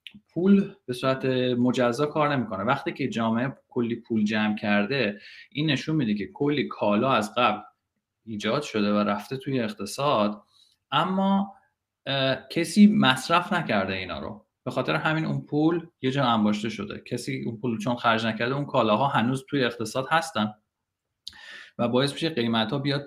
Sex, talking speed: male, 155 wpm